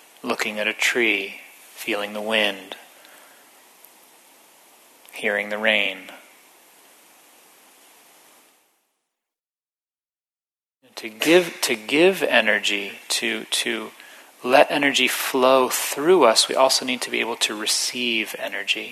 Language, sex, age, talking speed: English, male, 30-49, 100 wpm